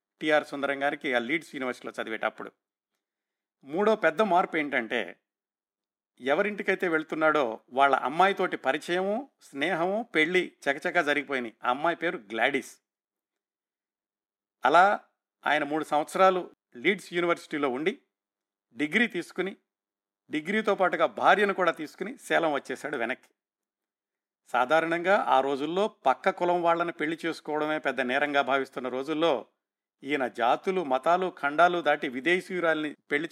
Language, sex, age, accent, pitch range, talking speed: Telugu, male, 50-69, native, 140-175 Hz, 105 wpm